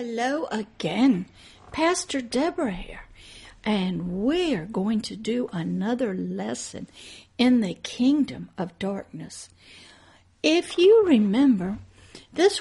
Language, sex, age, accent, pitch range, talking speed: English, female, 60-79, American, 205-265 Hz, 100 wpm